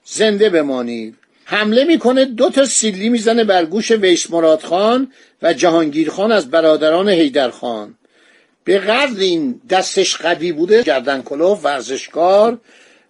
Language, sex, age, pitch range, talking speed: Persian, male, 50-69, 175-230 Hz, 120 wpm